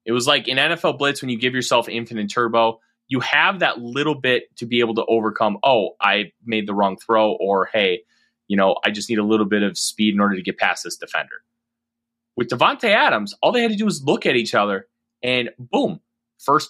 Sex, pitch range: male, 110-155 Hz